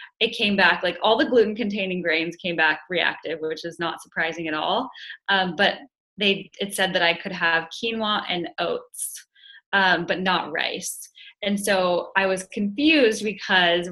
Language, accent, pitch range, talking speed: English, American, 170-200 Hz, 170 wpm